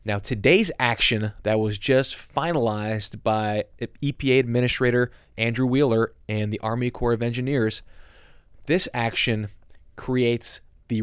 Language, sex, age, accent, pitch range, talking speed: English, male, 20-39, American, 105-125 Hz, 120 wpm